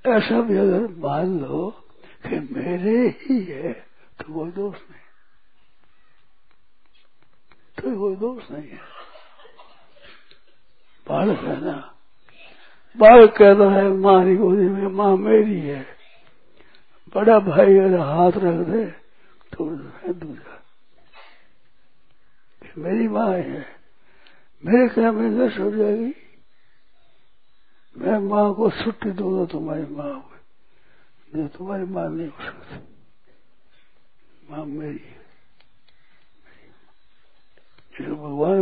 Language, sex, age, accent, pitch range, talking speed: Hindi, male, 60-79, native, 160-210 Hz, 95 wpm